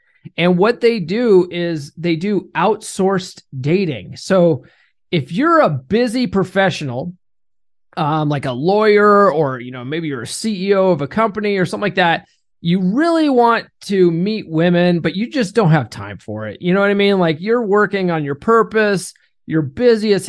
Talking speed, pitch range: 180 wpm, 155-200 Hz